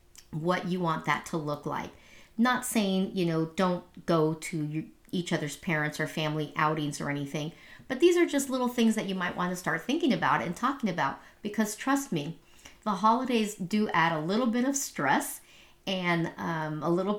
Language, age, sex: English, 40-59, female